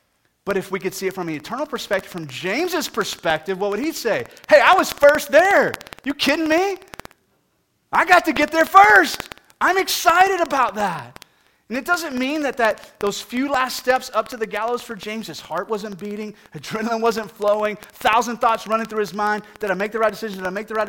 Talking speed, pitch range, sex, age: 215 wpm, 185-245 Hz, male, 30-49